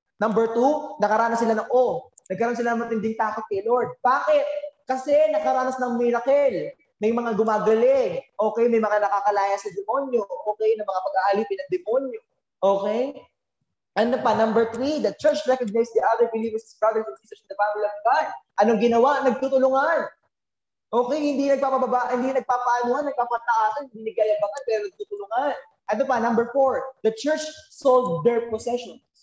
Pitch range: 215-275 Hz